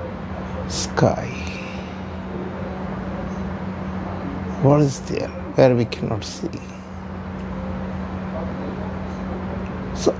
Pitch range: 90-100 Hz